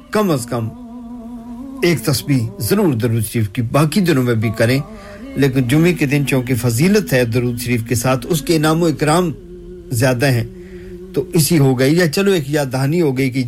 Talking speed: 170 wpm